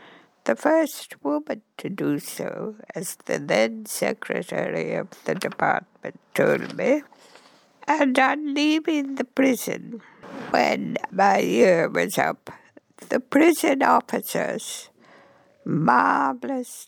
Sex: female